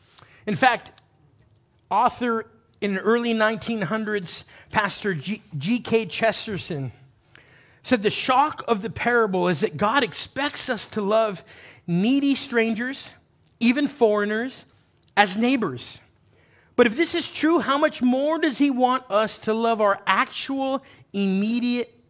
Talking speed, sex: 125 wpm, male